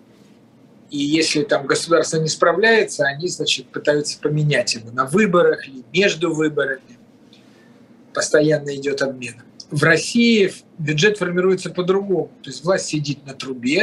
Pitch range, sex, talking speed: 155-205 Hz, male, 130 wpm